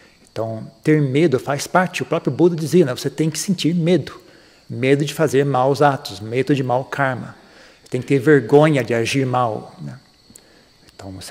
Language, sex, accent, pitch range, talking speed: Portuguese, male, Brazilian, 120-145 Hz, 180 wpm